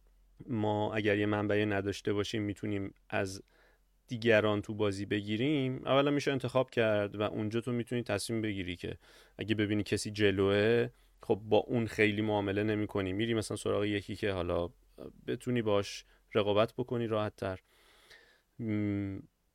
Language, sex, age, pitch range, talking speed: Persian, male, 30-49, 105-135 Hz, 145 wpm